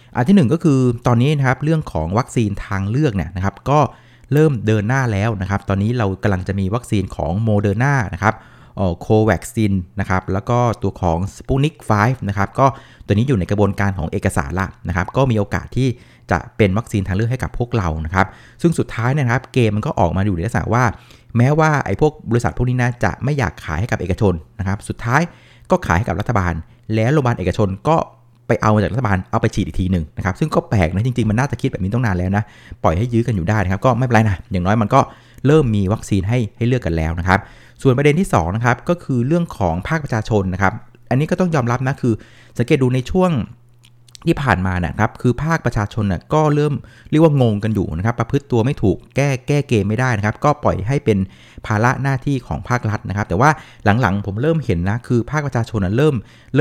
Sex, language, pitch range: male, Thai, 100-130 Hz